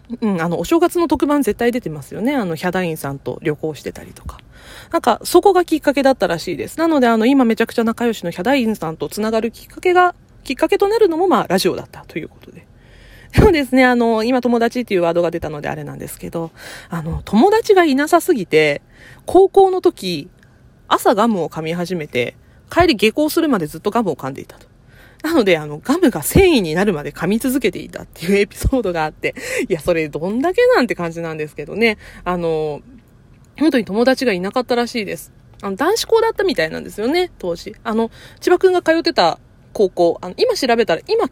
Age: 20-39